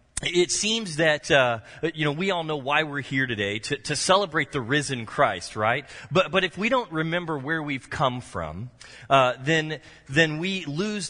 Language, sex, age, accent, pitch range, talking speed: English, male, 30-49, American, 120-165 Hz, 190 wpm